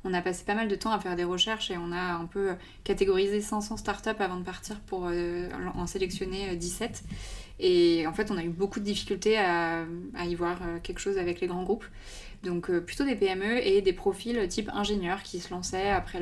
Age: 20-39